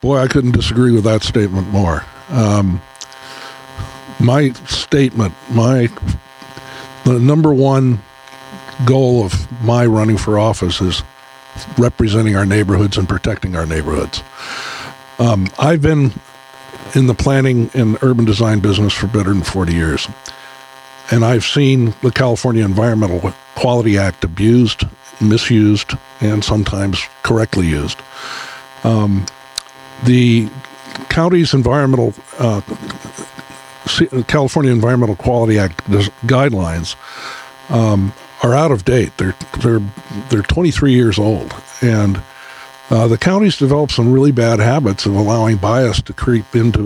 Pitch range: 105-135 Hz